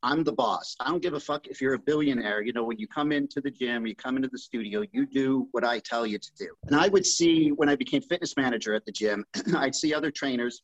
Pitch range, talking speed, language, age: 125-160 Hz, 275 wpm, English, 40-59